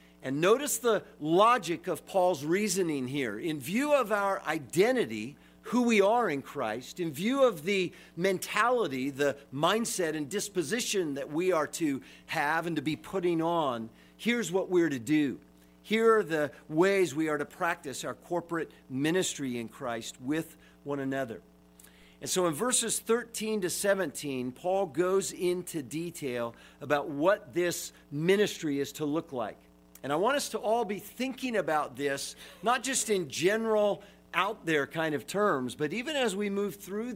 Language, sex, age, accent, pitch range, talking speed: English, male, 50-69, American, 145-195 Hz, 165 wpm